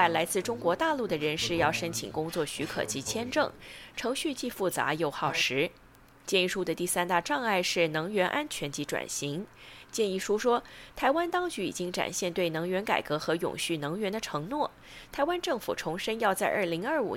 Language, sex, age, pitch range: Chinese, female, 20-39, 165-235 Hz